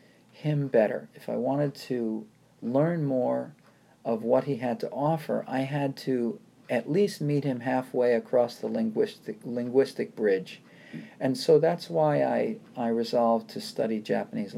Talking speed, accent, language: 150 wpm, American, English